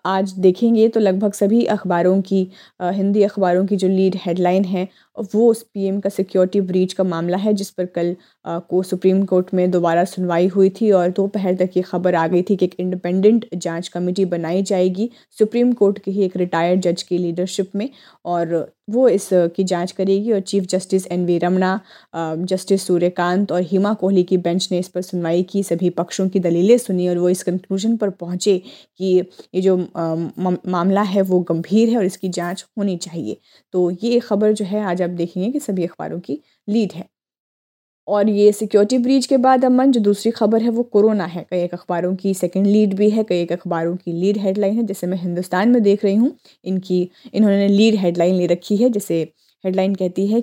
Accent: native